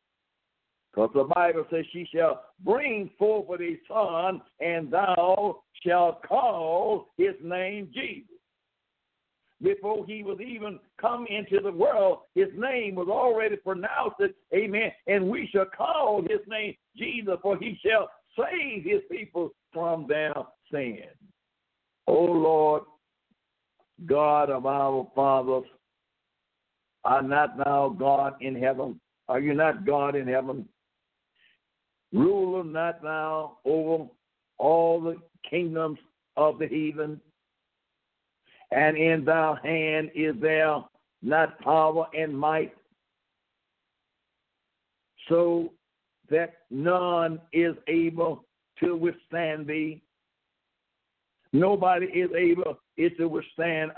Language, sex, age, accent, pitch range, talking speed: English, male, 60-79, American, 155-195 Hz, 110 wpm